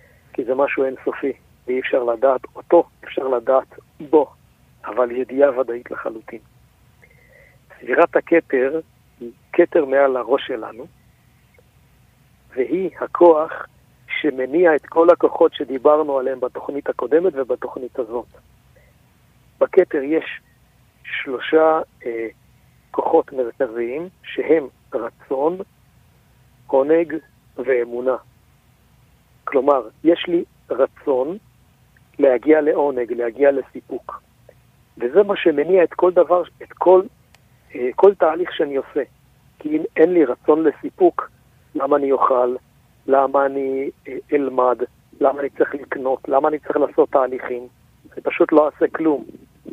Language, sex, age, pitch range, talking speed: Hebrew, male, 60-79, 130-175 Hz, 110 wpm